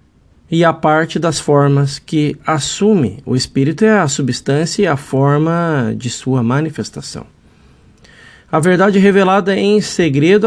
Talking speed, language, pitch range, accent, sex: 130 wpm, Portuguese, 130-185 Hz, Brazilian, male